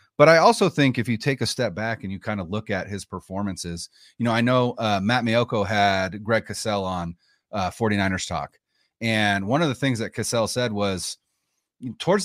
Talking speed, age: 205 wpm, 30-49